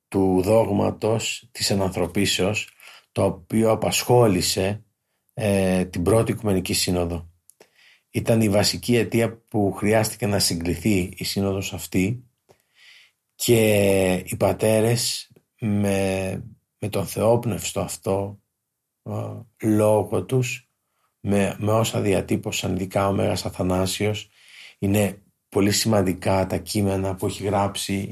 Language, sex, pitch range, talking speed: Greek, male, 95-105 Hz, 105 wpm